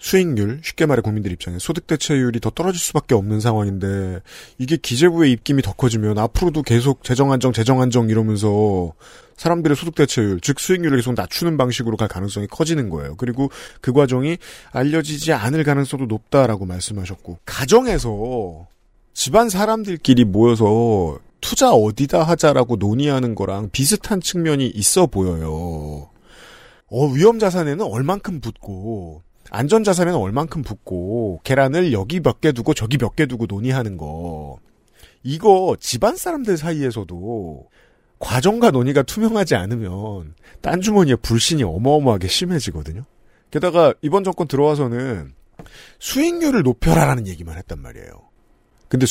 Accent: native